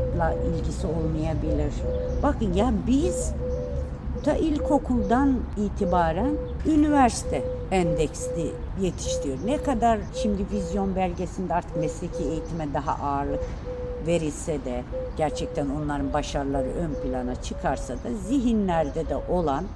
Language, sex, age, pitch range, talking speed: Turkish, female, 60-79, 155-245 Hz, 100 wpm